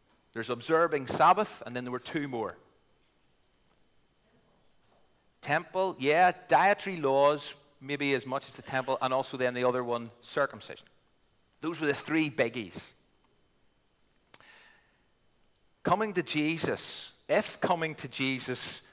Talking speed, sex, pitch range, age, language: 120 wpm, male, 120-160 Hz, 40-59, English